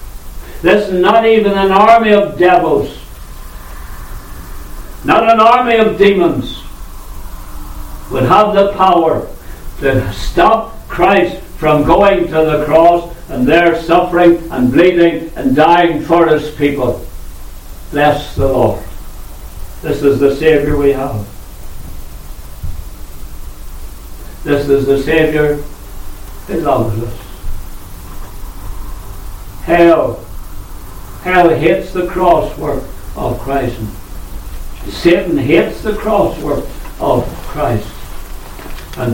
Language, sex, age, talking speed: English, male, 60-79, 100 wpm